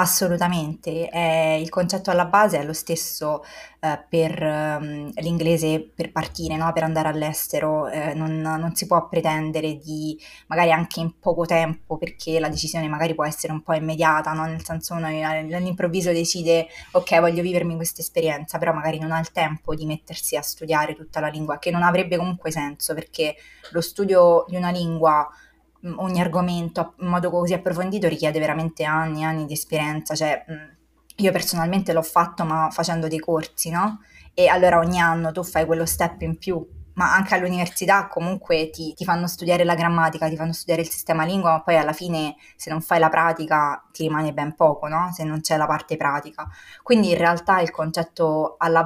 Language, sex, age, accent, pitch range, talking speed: Italian, female, 20-39, native, 155-170 Hz, 175 wpm